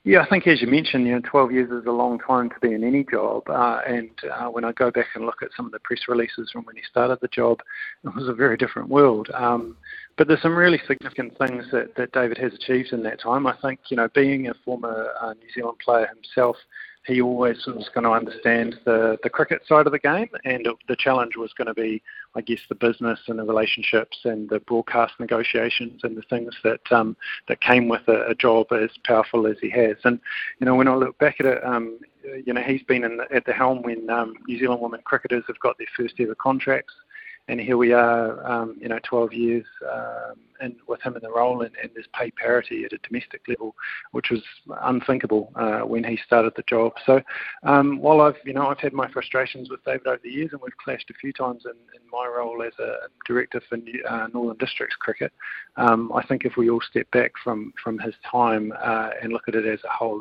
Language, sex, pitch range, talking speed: English, male, 115-130 Hz, 235 wpm